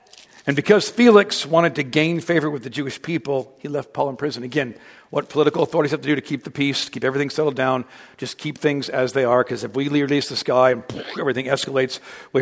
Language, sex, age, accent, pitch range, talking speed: English, male, 50-69, American, 140-200 Hz, 225 wpm